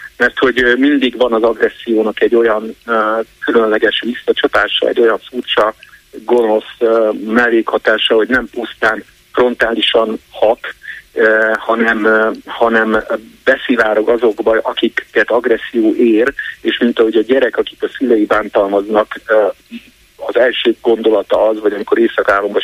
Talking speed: 125 wpm